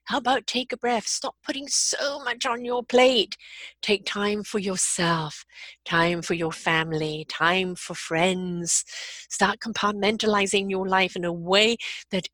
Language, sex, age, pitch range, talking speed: English, female, 50-69, 175-260 Hz, 150 wpm